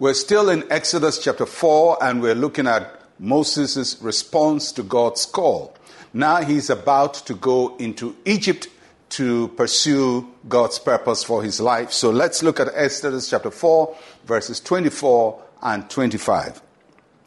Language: English